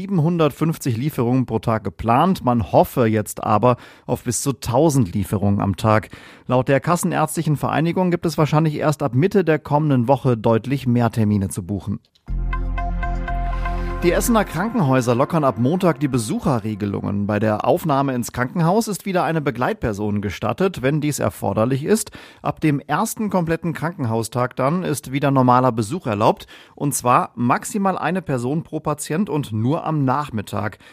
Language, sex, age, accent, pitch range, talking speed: German, male, 40-59, German, 115-155 Hz, 150 wpm